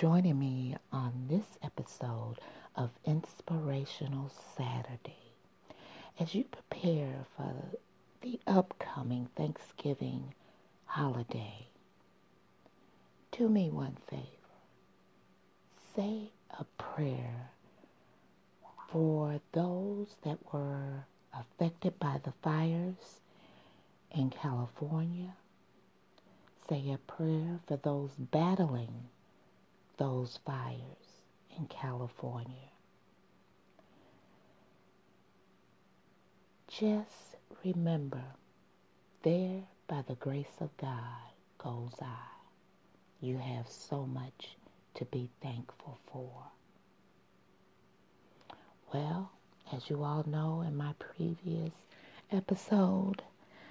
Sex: female